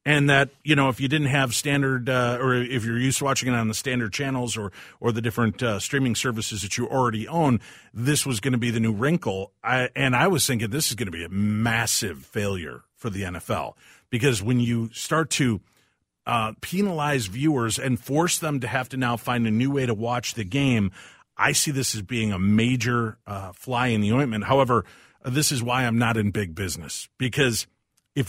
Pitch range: 115-150 Hz